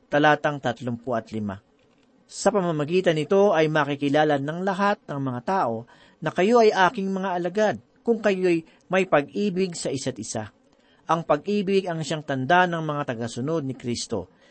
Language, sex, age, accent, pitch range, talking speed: Filipino, male, 40-59, native, 145-190 Hz, 140 wpm